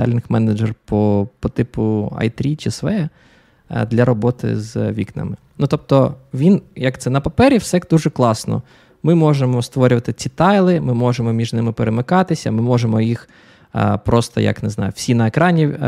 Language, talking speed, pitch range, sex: Ukrainian, 155 wpm, 115-145 Hz, male